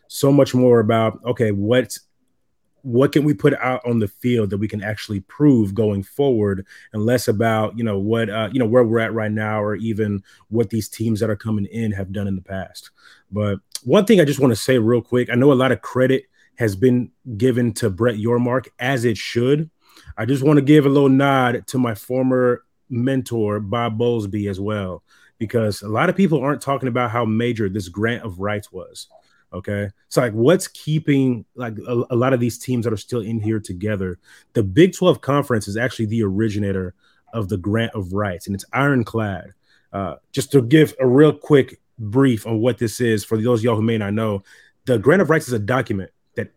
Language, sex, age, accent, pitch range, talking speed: English, male, 30-49, American, 105-130 Hz, 210 wpm